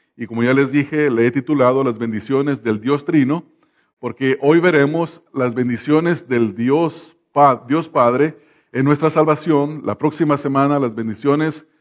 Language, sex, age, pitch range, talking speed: English, male, 40-59, 125-155 Hz, 145 wpm